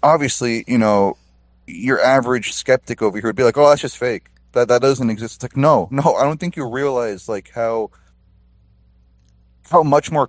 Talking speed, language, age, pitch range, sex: 190 wpm, English, 30-49, 80-125 Hz, male